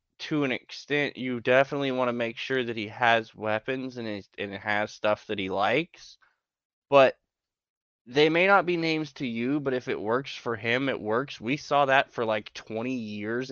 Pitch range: 110-130 Hz